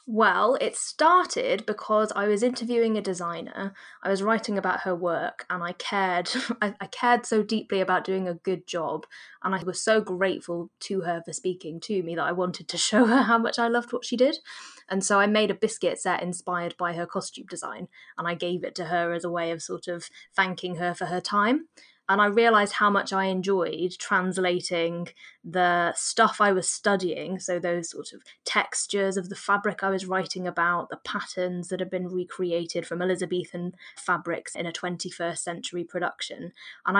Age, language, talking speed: 20-39, English, 195 wpm